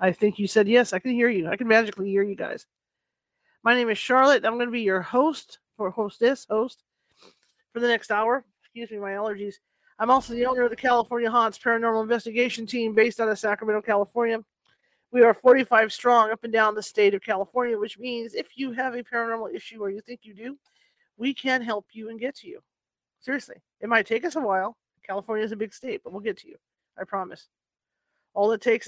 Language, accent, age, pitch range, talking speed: English, American, 40-59, 205-245 Hz, 220 wpm